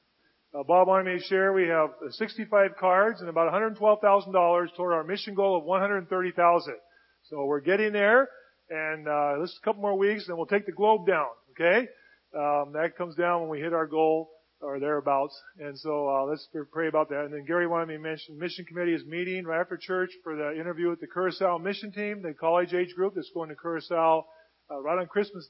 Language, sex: English, male